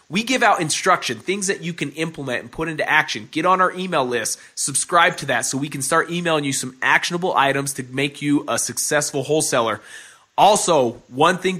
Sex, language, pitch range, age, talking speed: male, English, 135-175 Hz, 20-39, 200 wpm